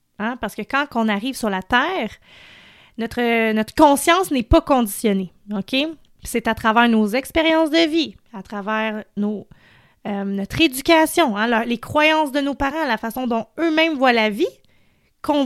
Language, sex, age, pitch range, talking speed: French, female, 30-49, 220-310 Hz, 170 wpm